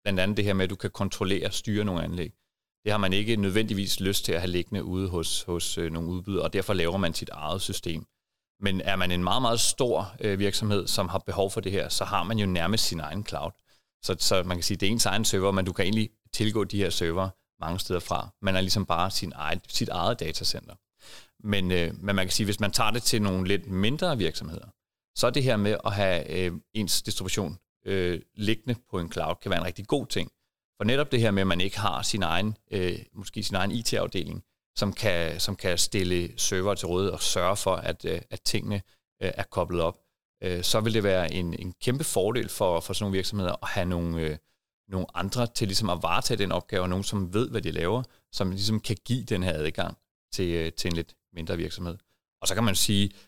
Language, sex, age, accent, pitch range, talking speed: Danish, male, 30-49, native, 90-105 Hz, 235 wpm